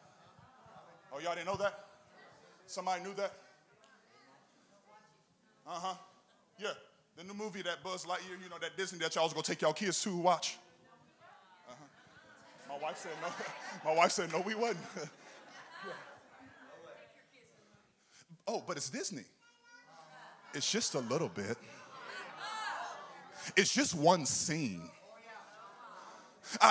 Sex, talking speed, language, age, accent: male, 125 wpm, English, 20-39, American